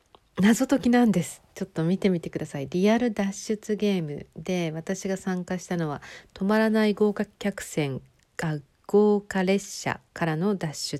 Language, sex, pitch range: Japanese, female, 155-200 Hz